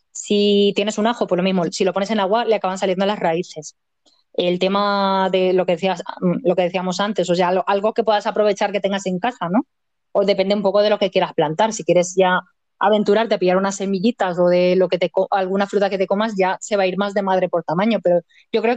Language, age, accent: Spanish, 20-39, Spanish